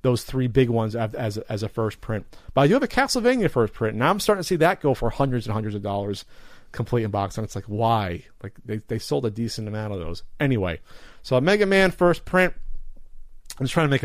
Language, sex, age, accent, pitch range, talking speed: English, male, 40-59, American, 110-170 Hz, 250 wpm